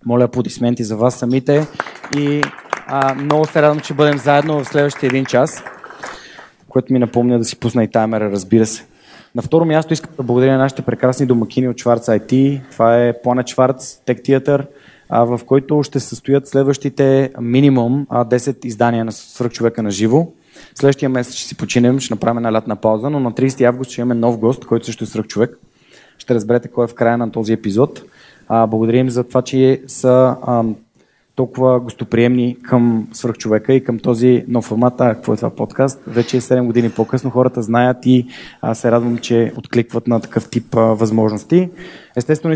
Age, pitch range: 20-39, 115-135 Hz